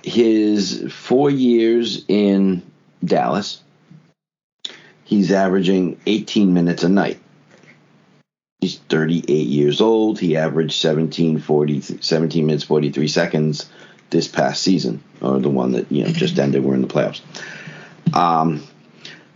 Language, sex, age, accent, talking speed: English, male, 50-69, American, 120 wpm